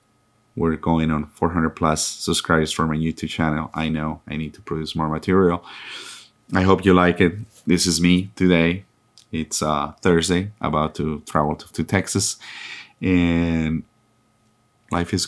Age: 30-49